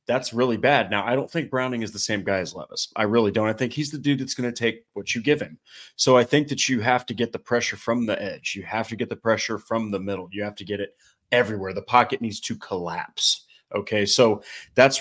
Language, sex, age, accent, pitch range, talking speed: English, male, 30-49, American, 100-125 Hz, 265 wpm